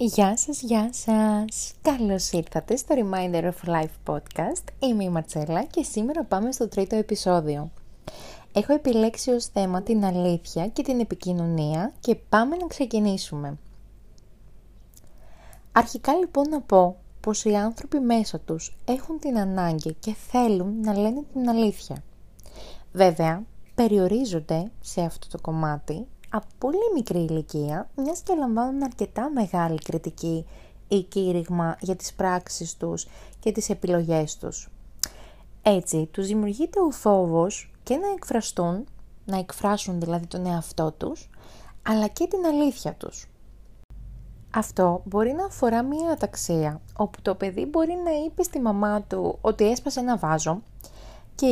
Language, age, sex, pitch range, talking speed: Greek, 20-39, female, 170-250 Hz, 135 wpm